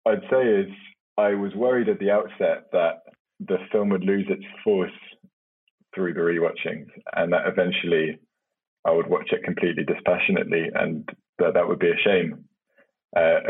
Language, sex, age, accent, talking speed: English, male, 20-39, British, 160 wpm